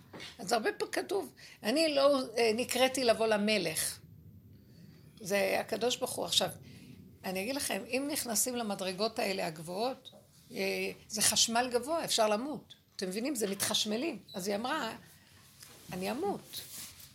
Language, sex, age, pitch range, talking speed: Hebrew, female, 60-79, 190-250 Hz, 135 wpm